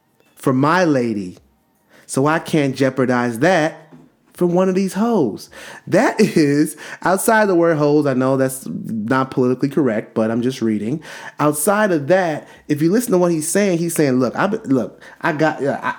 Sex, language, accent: male, English, American